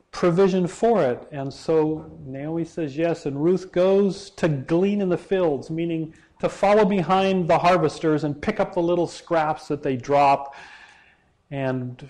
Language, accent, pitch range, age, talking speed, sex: English, American, 145-180 Hz, 40-59, 160 wpm, male